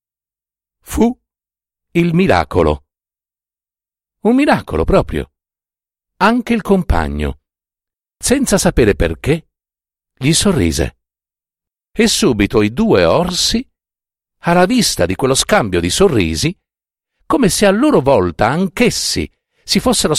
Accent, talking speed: native, 100 wpm